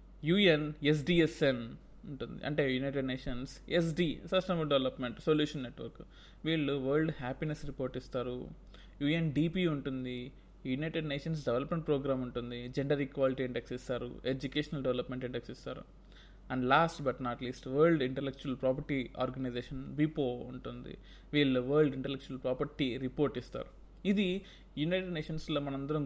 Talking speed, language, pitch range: 120 wpm, Telugu, 130-165 Hz